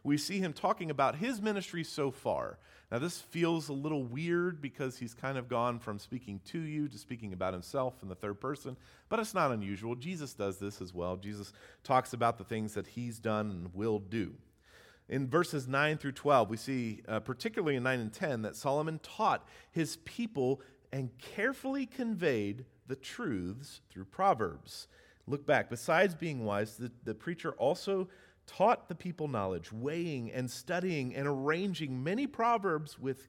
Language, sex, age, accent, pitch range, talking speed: English, male, 40-59, American, 105-160 Hz, 175 wpm